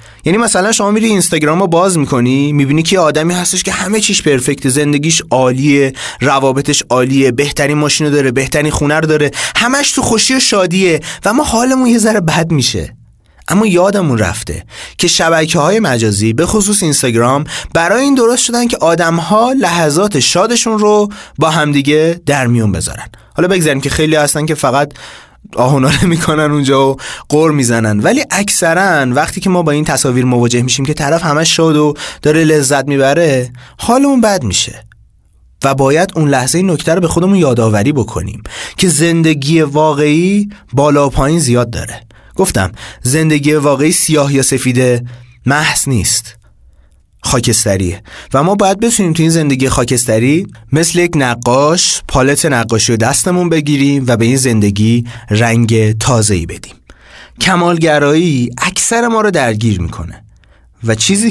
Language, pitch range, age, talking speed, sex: Persian, 120-170 Hz, 20-39, 150 wpm, male